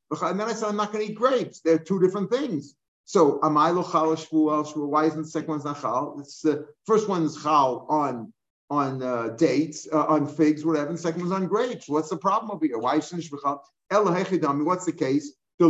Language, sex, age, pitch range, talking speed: English, male, 50-69, 155-190 Hz, 230 wpm